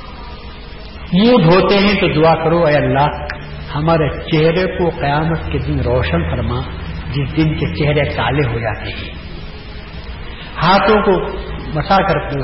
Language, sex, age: Urdu, male, 60-79